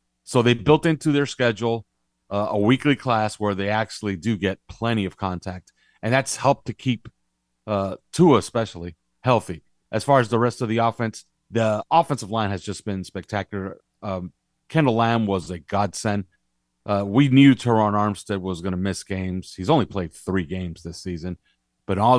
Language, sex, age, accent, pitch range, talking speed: English, male, 40-59, American, 95-125 Hz, 180 wpm